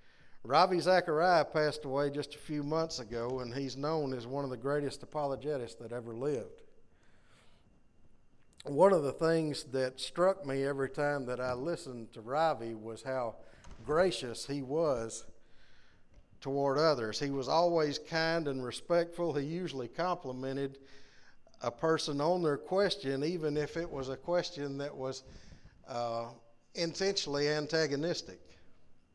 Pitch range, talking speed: 130-160 Hz, 140 wpm